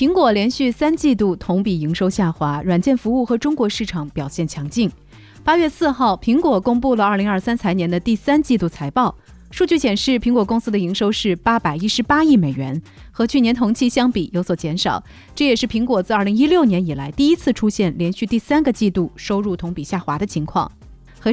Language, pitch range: Chinese, 185-255 Hz